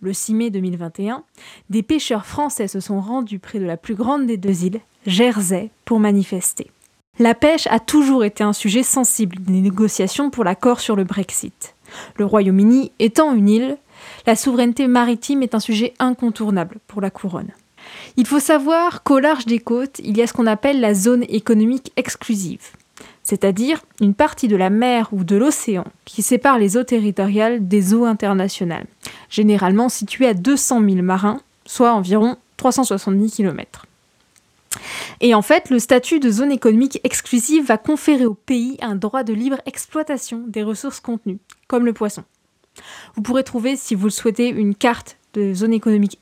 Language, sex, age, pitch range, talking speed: French, female, 20-39, 205-250 Hz, 170 wpm